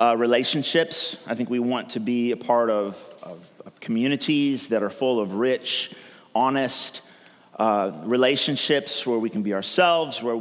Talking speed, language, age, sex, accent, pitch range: 160 wpm, English, 30-49, male, American, 110-140 Hz